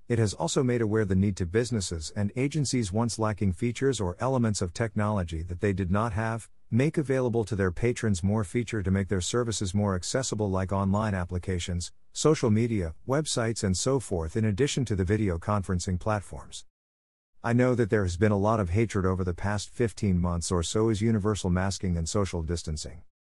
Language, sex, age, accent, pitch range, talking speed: English, male, 50-69, American, 90-115 Hz, 195 wpm